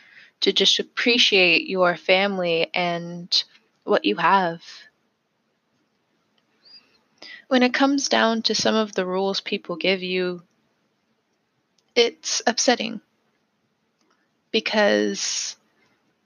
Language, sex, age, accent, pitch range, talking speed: English, female, 20-39, American, 180-215 Hz, 90 wpm